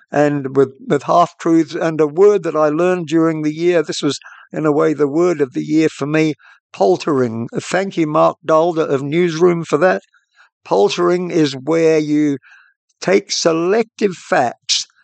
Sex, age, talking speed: male, 60-79, 165 wpm